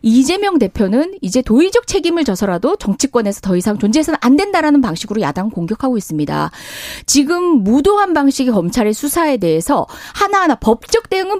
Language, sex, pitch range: Korean, female, 220-335 Hz